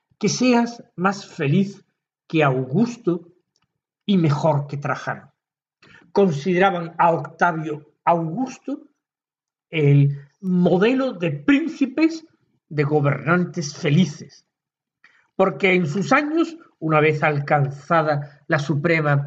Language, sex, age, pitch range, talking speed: Spanish, male, 50-69, 150-195 Hz, 95 wpm